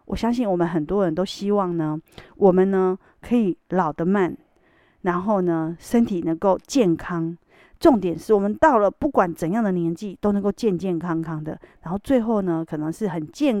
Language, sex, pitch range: Chinese, female, 170-220 Hz